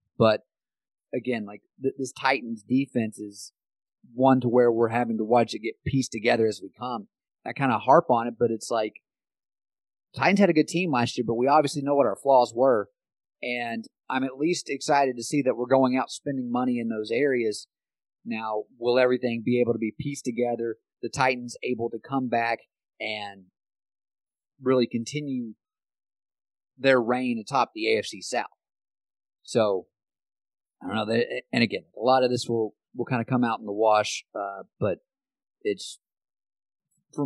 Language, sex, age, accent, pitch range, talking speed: English, male, 30-49, American, 115-130 Hz, 175 wpm